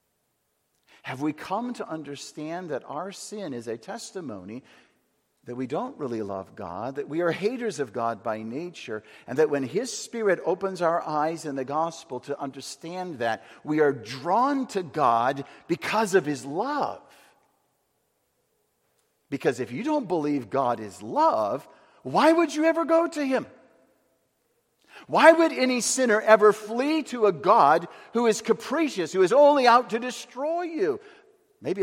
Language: English